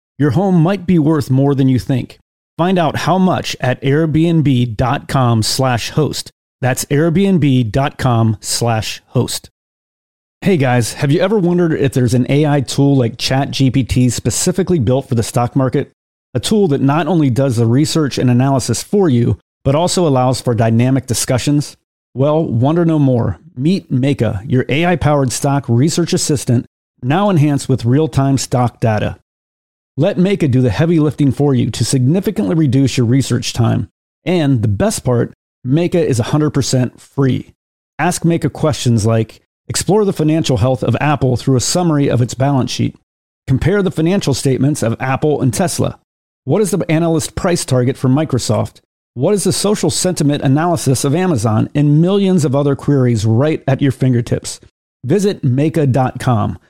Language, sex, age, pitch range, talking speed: English, male, 40-59, 125-155 Hz, 160 wpm